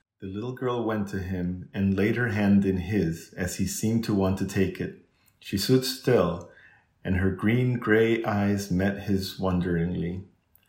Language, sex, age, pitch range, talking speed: English, male, 30-49, 95-115 Hz, 175 wpm